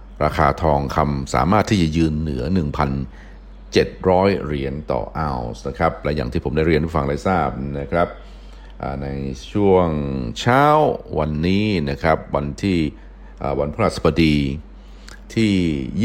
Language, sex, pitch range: Thai, male, 70-90 Hz